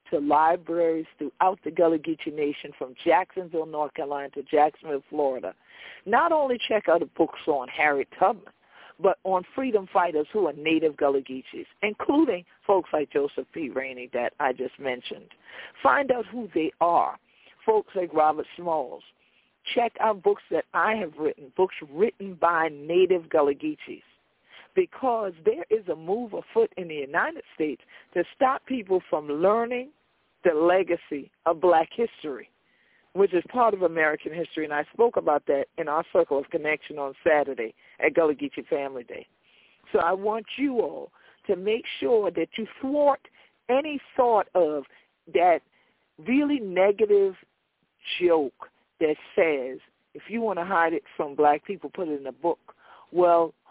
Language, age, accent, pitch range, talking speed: English, 50-69, American, 155-250 Hz, 160 wpm